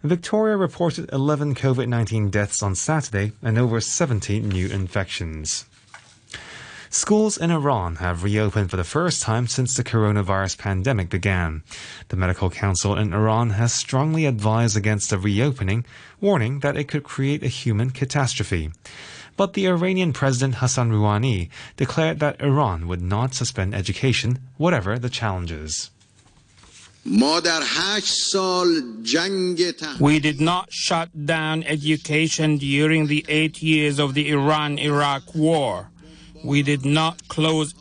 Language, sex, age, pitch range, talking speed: English, male, 20-39, 110-155 Hz, 125 wpm